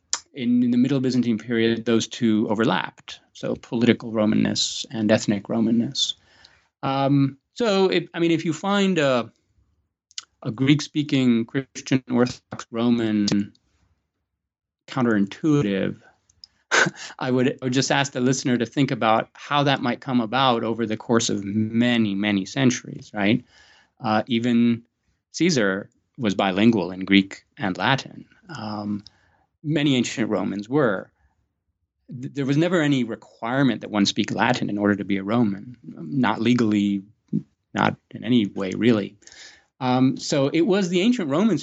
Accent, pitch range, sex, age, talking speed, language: American, 105-140 Hz, male, 30-49, 145 wpm, English